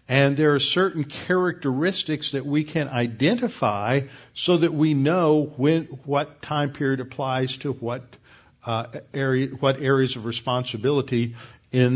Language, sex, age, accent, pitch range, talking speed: English, male, 50-69, American, 120-150 Hz, 135 wpm